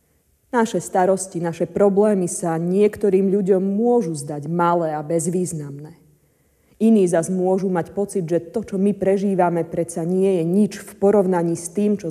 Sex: female